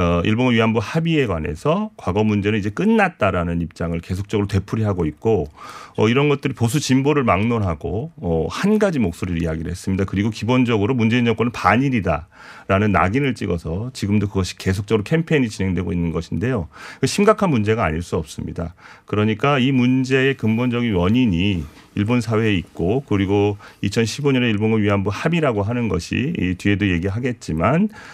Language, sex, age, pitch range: Korean, male, 40-59, 95-125 Hz